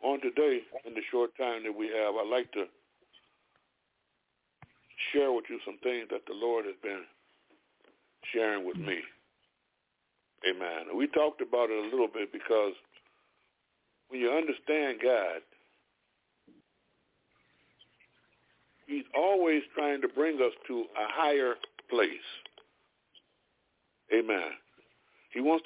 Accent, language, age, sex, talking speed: American, English, 60-79, male, 120 wpm